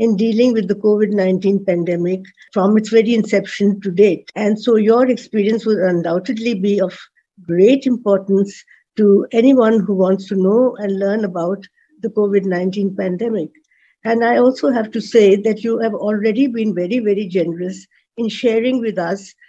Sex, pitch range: female, 195-230 Hz